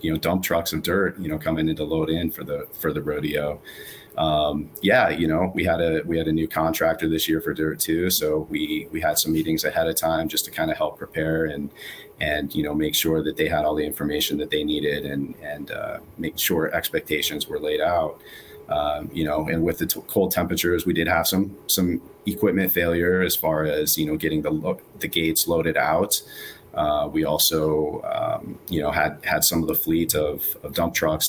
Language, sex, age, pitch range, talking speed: English, male, 30-49, 75-90 Hz, 225 wpm